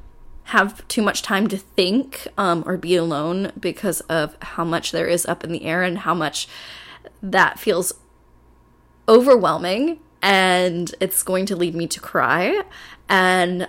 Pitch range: 175-235 Hz